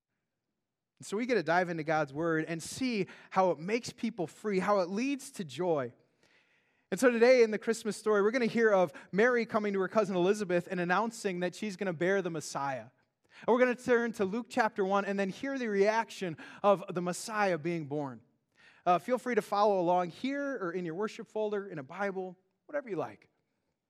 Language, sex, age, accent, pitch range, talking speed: English, male, 20-39, American, 165-220 Hz, 215 wpm